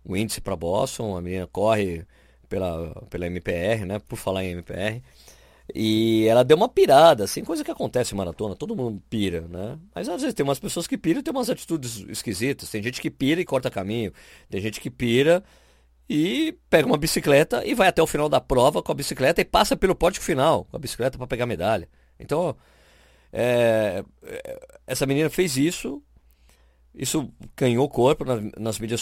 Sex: male